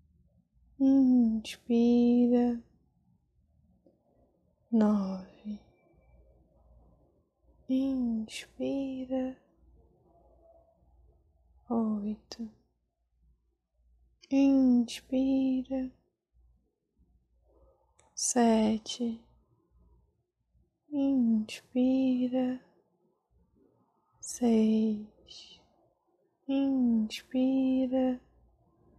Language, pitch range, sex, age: Portuguese, 215-260 Hz, female, 20-39